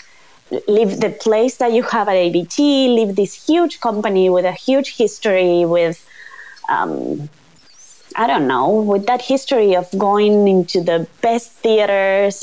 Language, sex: English, female